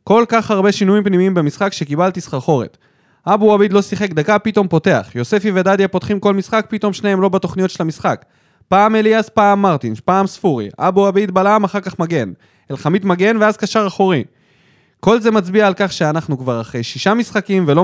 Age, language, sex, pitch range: 20-39, Hebrew, male, 145-205 Hz